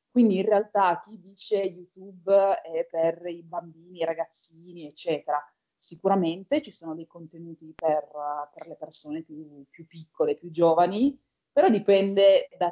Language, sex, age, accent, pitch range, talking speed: Italian, female, 30-49, native, 170-220 Hz, 140 wpm